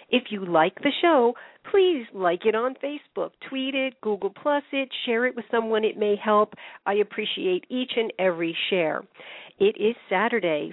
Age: 50-69